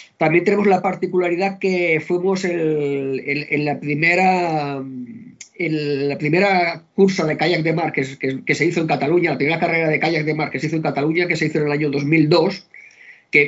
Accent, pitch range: Spanish, 145-170 Hz